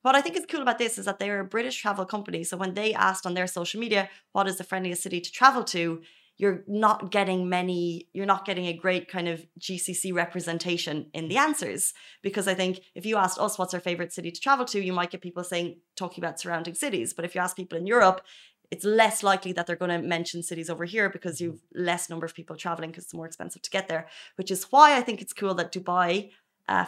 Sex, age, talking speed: female, 20-39, 250 wpm